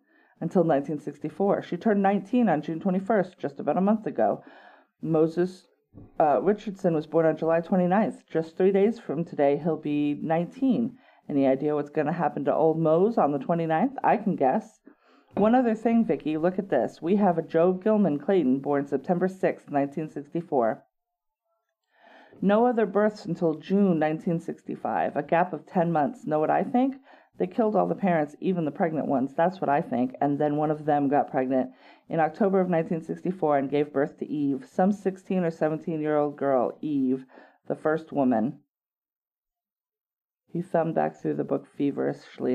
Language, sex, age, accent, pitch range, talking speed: English, female, 40-59, American, 140-190 Hz, 170 wpm